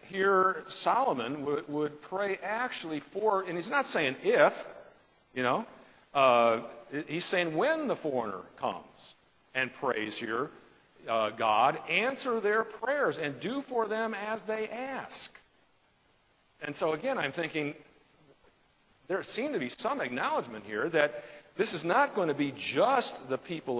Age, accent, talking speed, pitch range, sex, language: 50-69, American, 145 wpm, 150-230 Hz, male, English